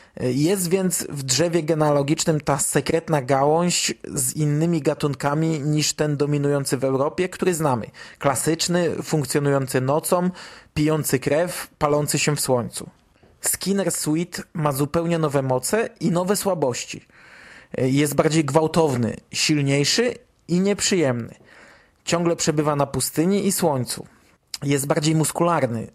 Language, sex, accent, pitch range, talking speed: Polish, male, native, 140-165 Hz, 120 wpm